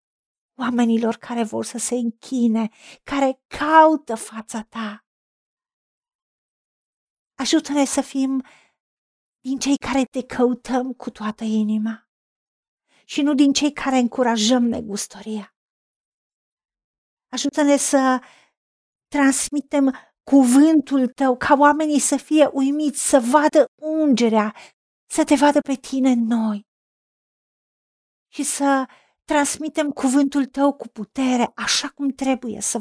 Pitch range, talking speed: 230-280 Hz, 110 wpm